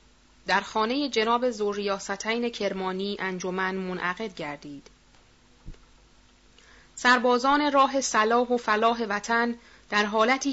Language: Persian